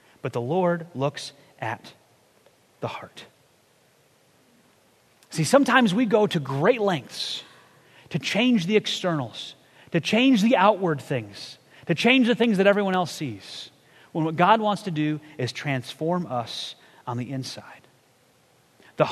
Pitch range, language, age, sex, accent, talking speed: 160-230 Hz, English, 30-49, male, American, 140 wpm